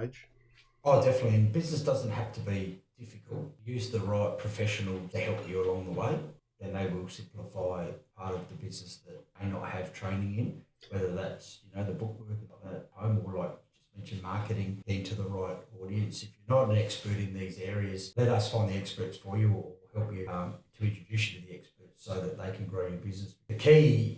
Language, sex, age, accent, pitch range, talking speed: English, male, 30-49, Australian, 95-115 Hz, 215 wpm